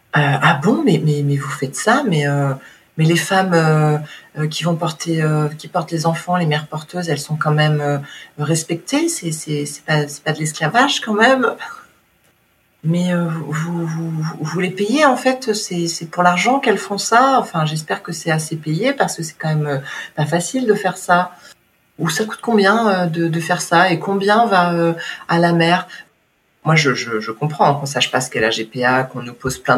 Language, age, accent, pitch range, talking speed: French, 40-59, French, 145-185 Hz, 220 wpm